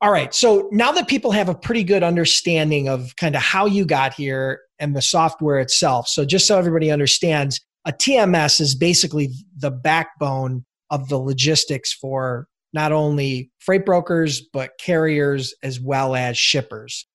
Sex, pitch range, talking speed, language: male, 135-170 Hz, 165 wpm, English